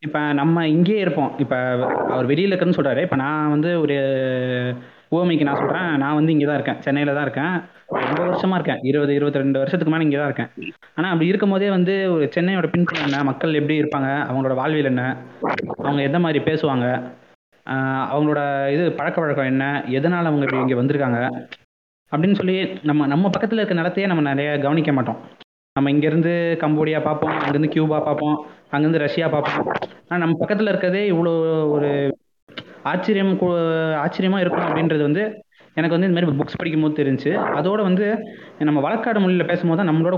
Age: 20-39